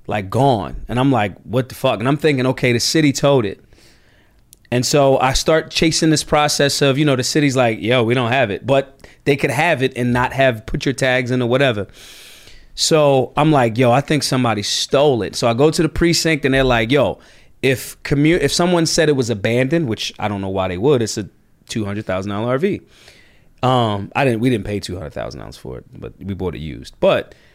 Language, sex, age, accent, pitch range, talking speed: English, male, 30-49, American, 115-150 Hz, 220 wpm